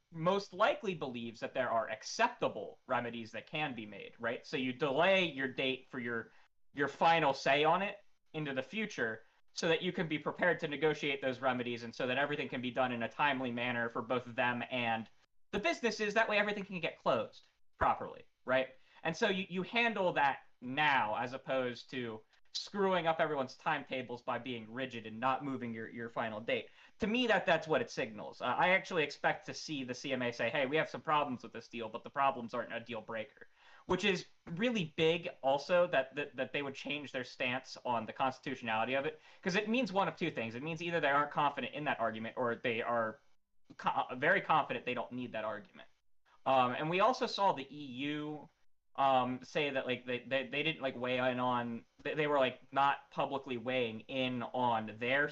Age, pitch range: 30-49, 125-160 Hz